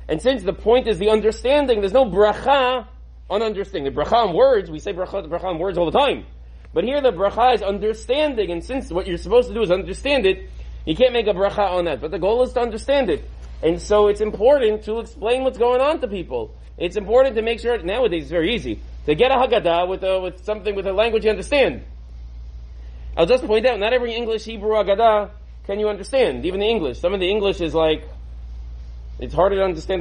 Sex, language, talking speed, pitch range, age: male, English, 225 wpm, 170-240 Hz, 30-49